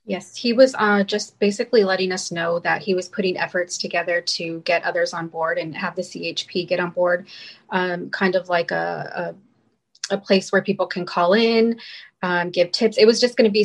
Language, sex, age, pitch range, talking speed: English, female, 20-39, 170-195 Hz, 215 wpm